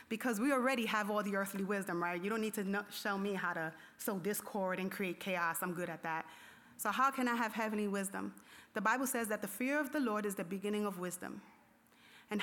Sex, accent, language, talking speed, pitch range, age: female, American, English, 230 wpm, 190-240 Hz, 30-49